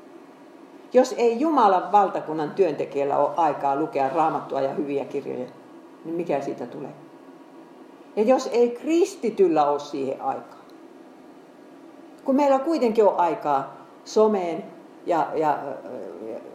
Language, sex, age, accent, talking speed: Finnish, female, 50-69, native, 115 wpm